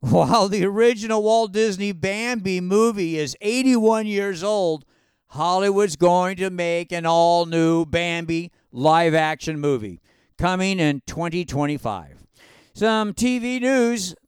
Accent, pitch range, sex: American, 160-205 Hz, male